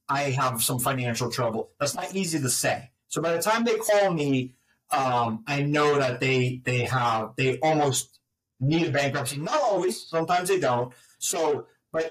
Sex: male